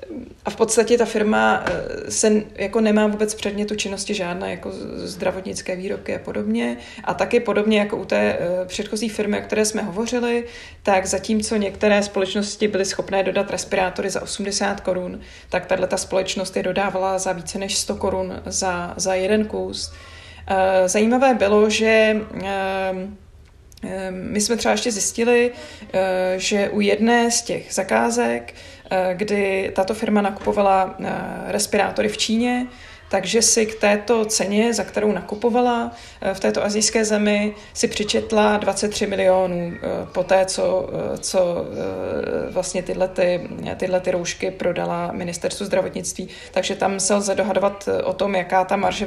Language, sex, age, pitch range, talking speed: Czech, female, 20-39, 185-215 Hz, 140 wpm